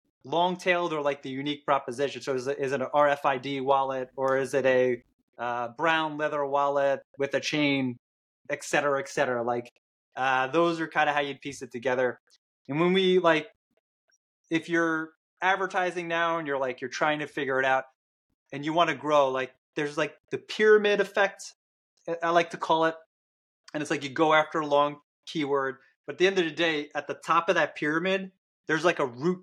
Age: 20-39